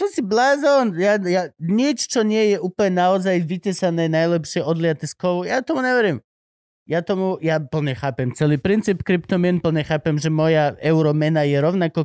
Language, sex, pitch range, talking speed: Slovak, male, 140-185 Hz, 165 wpm